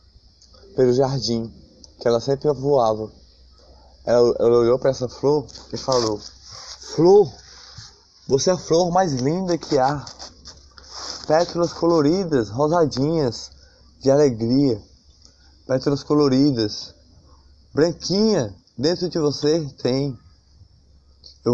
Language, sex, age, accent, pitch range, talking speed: Portuguese, male, 20-39, Brazilian, 110-145 Hz, 100 wpm